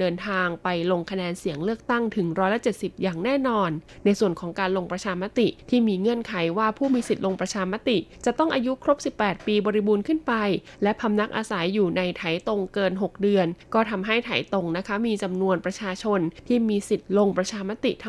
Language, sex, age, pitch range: Thai, female, 20-39, 180-225 Hz